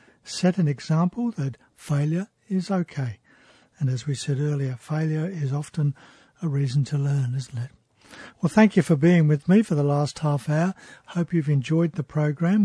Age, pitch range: 60-79, 145-170 Hz